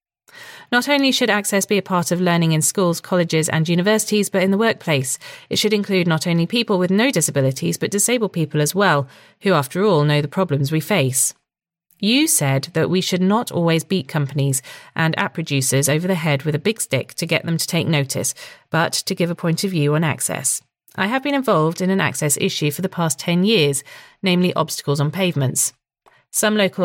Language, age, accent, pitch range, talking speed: English, 40-59, British, 155-210 Hz, 210 wpm